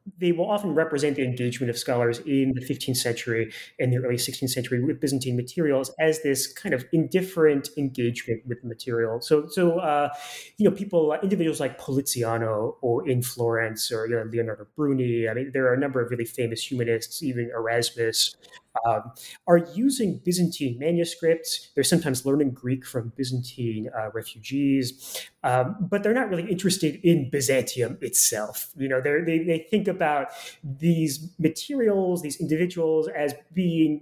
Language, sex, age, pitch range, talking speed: English, male, 30-49, 125-170 Hz, 160 wpm